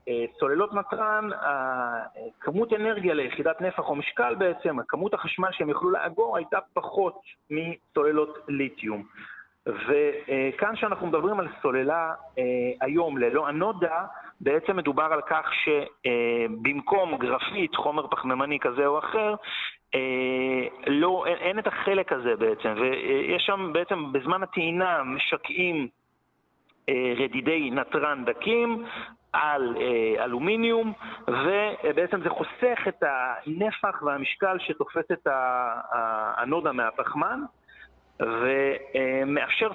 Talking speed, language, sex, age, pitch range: 100 wpm, Hebrew, male, 40-59, 135-210 Hz